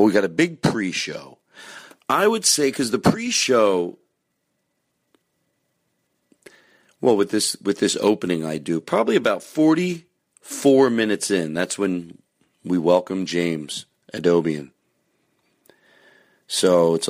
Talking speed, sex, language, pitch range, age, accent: 110 wpm, male, English, 90-130 Hz, 40-59, American